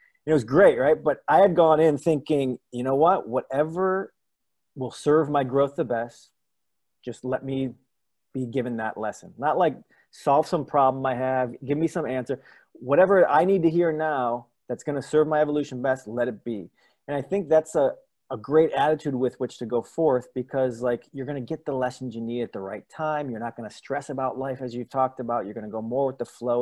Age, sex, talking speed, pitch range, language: 30-49, male, 225 wpm, 130-175 Hz, English